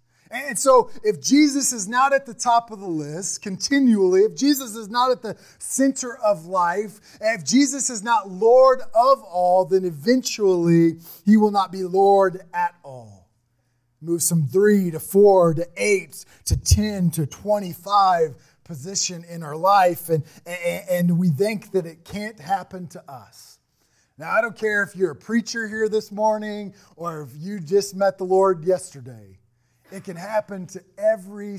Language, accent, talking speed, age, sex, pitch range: English, American, 165 wpm, 30-49, male, 170-220 Hz